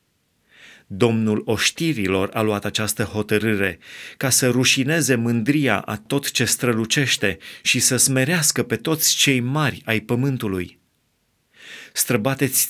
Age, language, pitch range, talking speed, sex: 30-49, Romanian, 110-145 Hz, 115 wpm, male